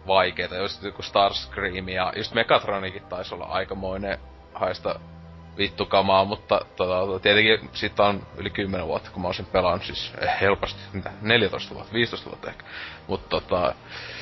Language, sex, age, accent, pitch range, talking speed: Finnish, male, 20-39, native, 100-140 Hz, 125 wpm